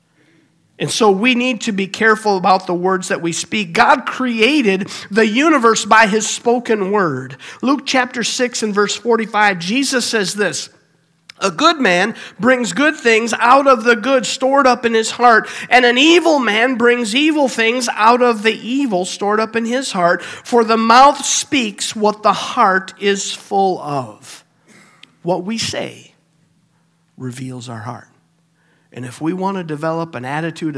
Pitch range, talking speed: 160-230 Hz, 165 wpm